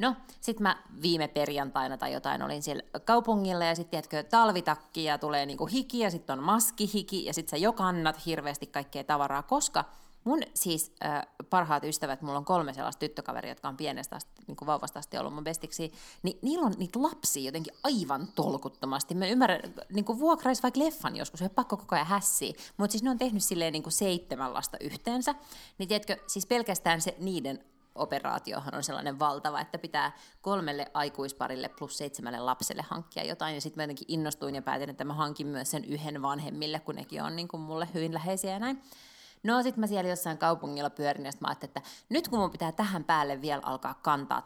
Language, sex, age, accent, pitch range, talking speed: Finnish, female, 20-39, native, 150-215 Hz, 190 wpm